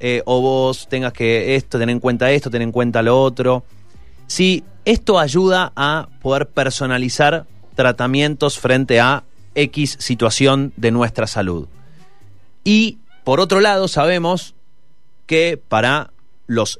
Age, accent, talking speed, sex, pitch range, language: 30-49, Argentinian, 130 wpm, male, 115-150 Hz, Spanish